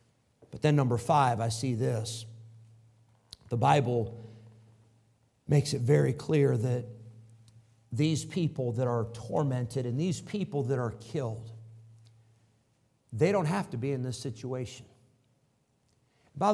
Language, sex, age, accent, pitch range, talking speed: English, male, 50-69, American, 115-145 Hz, 125 wpm